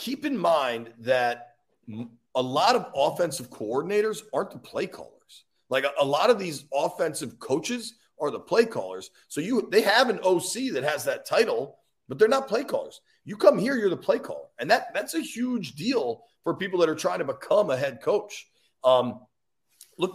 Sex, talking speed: male, 195 wpm